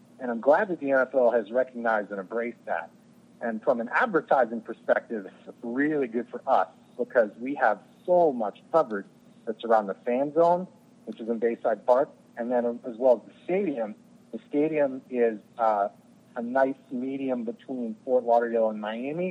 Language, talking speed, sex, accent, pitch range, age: English, 175 wpm, male, American, 115-160 Hz, 40-59